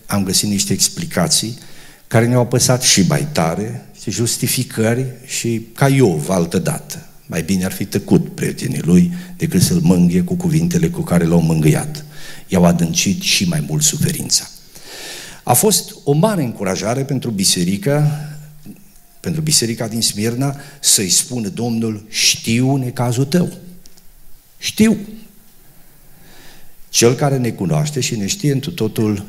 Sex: male